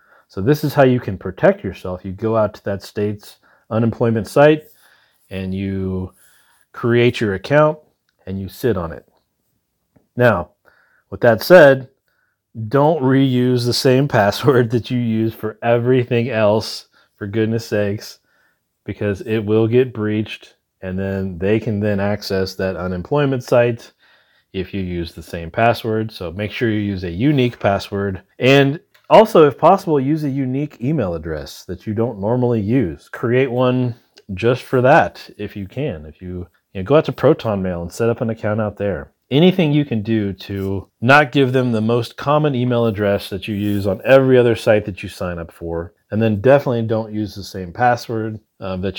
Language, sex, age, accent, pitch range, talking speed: English, male, 30-49, American, 95-125 Hz, 175 wpm